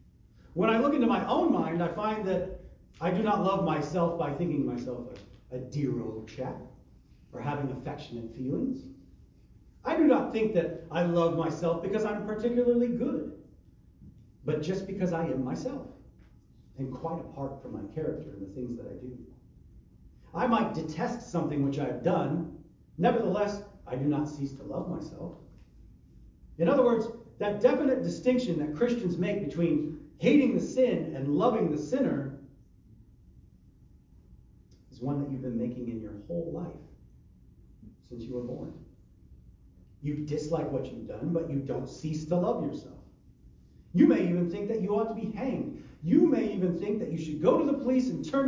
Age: 40-59